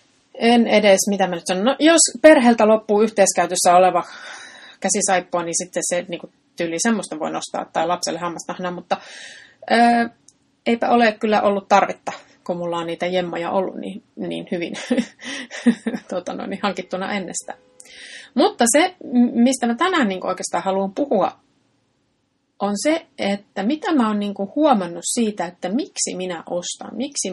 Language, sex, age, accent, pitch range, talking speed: Finnish, female, 30-49, native, 185-255 Hz, 145 wpm